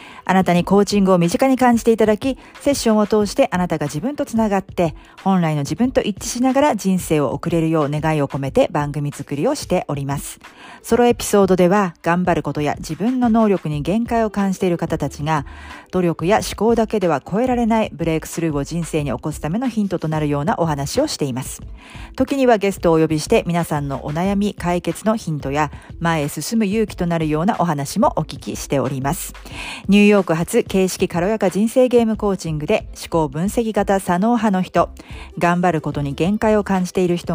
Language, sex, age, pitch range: Japanese, female, 40-59, 155-215 Hz